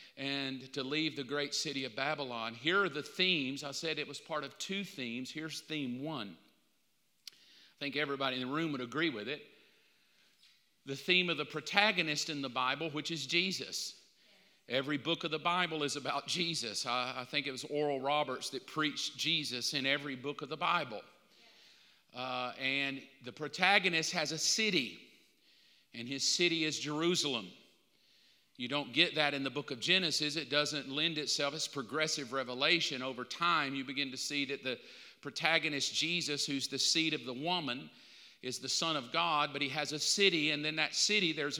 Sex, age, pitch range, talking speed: male, 50-69, 135-160 Hz, 185 wpm